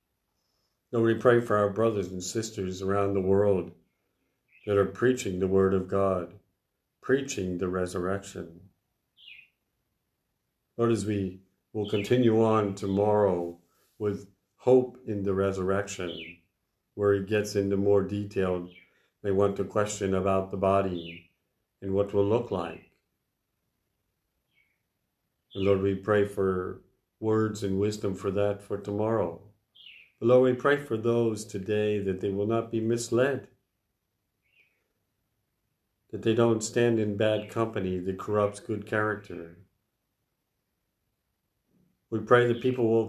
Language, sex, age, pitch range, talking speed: English, male, 50-69, 95-110 Hz, 130 wpm